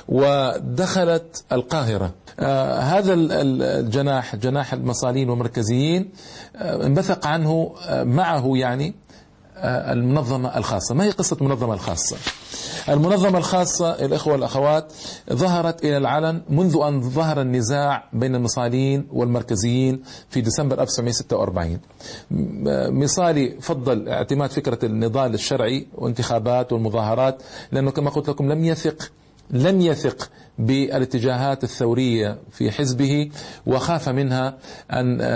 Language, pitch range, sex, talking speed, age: Arabic, 120-150 Hz, male, 105 wpm, 50-69